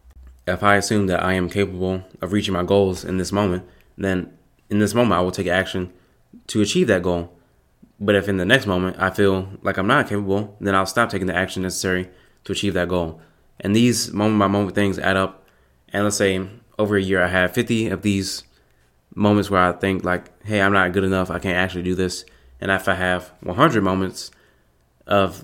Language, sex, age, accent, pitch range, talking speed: English, male, 20-39, American, 90-100 Hz, 210 wpm